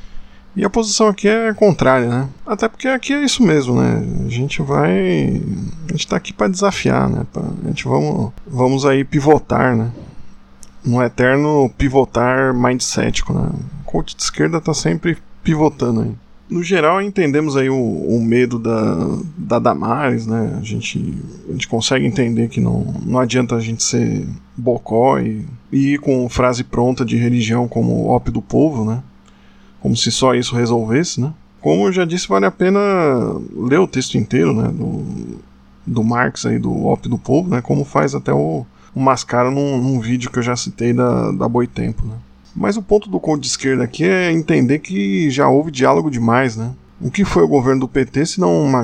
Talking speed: 190 wpm